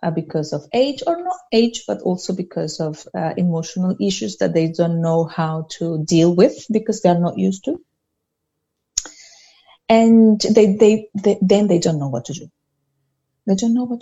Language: Chinese